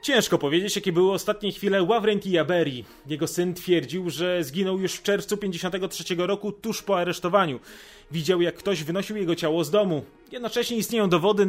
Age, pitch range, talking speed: 30-49, 160-210 Hz, 165 wpm